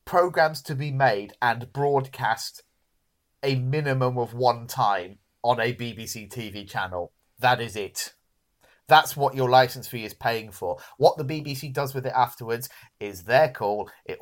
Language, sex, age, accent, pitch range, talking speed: English, male, 30-49, British, 115-140 Hz, 160 wpm